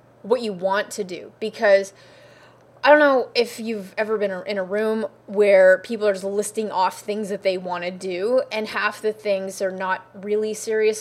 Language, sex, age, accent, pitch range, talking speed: English, female, 20-39, American, 190-225 Hz, 195 wpm